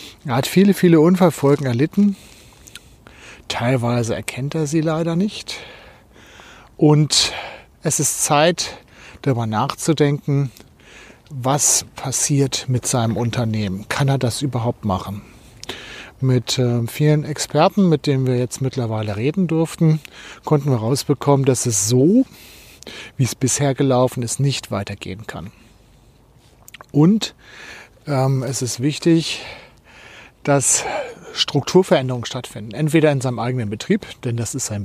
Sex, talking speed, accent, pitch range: male, 120 wpm, German, 120-155 Hz